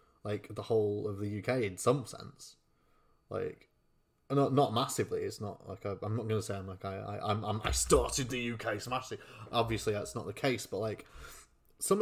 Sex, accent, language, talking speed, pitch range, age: male, British, English, 205 wpm, 105-125 Hz, 20-39